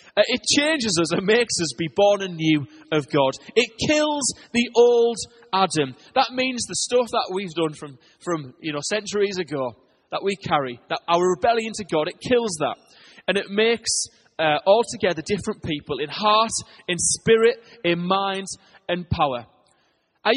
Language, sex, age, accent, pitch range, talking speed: English, male, 20-39, British, 160-230 Hz, 170 wpm